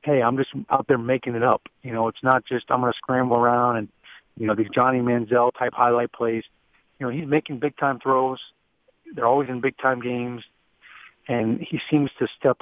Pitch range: 115-130 Hz